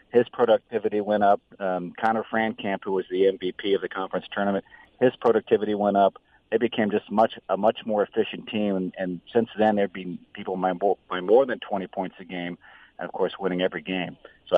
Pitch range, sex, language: 90-105 Hz, male, English